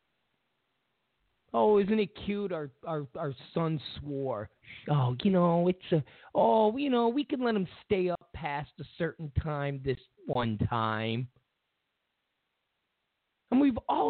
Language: English